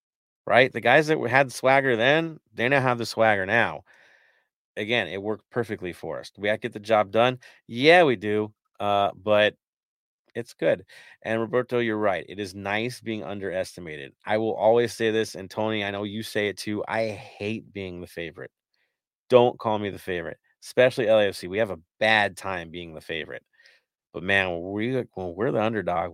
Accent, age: American, 30-49